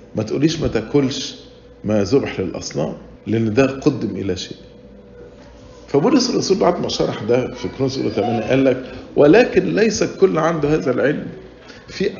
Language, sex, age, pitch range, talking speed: English, male, 50-69, 120-165 Hz, 140 wpm